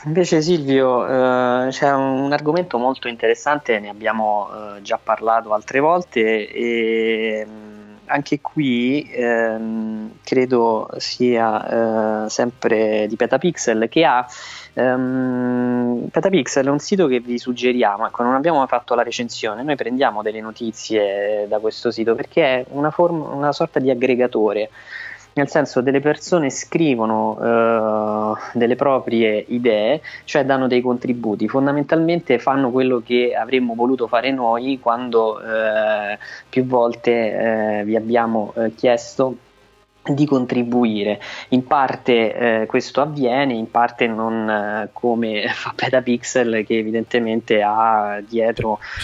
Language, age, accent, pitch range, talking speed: Italian, 20-39, native, 110-130 Hz, 125 wpm